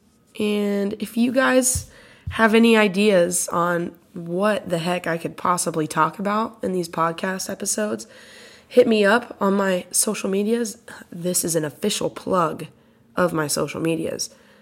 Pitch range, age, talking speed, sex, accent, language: 170-215 Hz, 20-39, 150 wpm, female, American, English